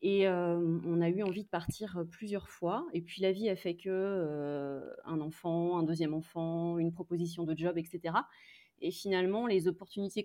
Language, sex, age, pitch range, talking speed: French, female, 30-49, 165-200 Hz, 180 wpm